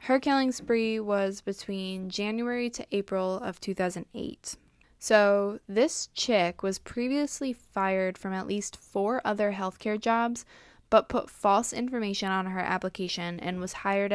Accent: American